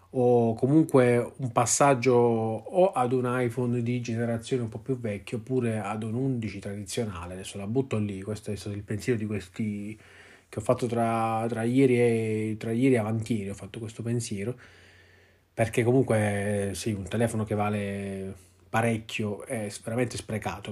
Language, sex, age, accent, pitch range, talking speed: Italian, male, 30-49, native, 100-125 Hz, 160 wpm